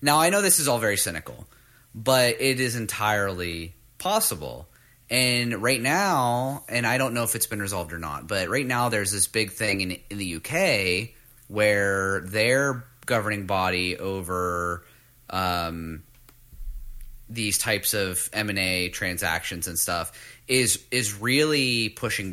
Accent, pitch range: American, 100-125 Hz